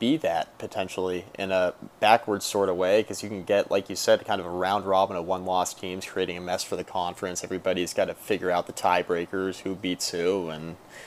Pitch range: 95-105 Hz